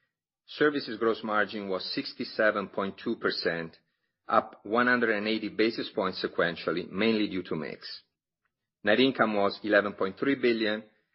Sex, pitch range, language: male, 100-115 Hz, English